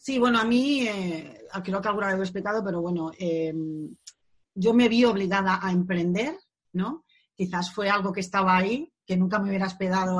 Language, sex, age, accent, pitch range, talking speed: Spanish, female, 30-49, Spanish, 175-225 Hz, 190 wpm